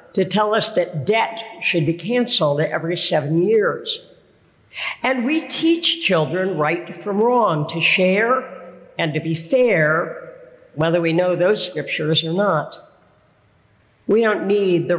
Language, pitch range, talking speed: English, 160-225 Hz, 140 wpm